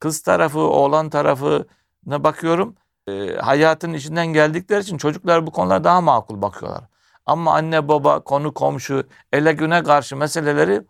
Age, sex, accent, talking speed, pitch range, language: 60-79, male, native, 140 wpm, 130-155 Hz, Turkish